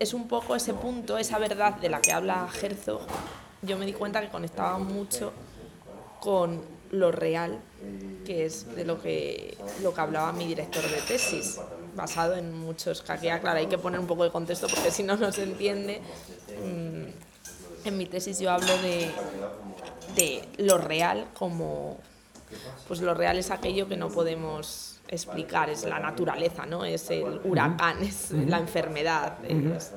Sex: female